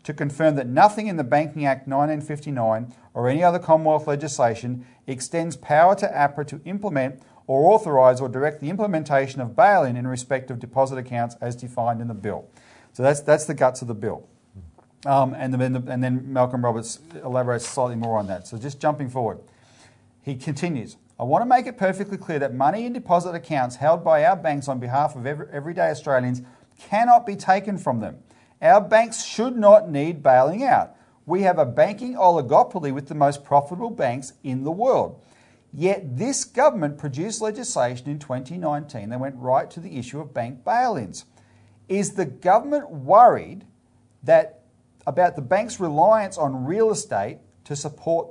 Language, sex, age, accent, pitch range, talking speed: English, male, 40-59, Australian, 125-180 Hz, 175 wpm